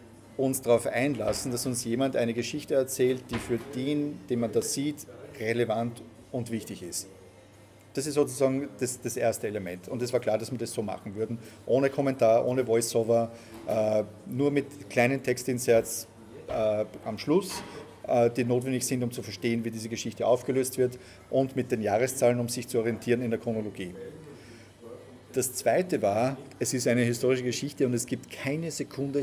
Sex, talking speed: male, 170 wpm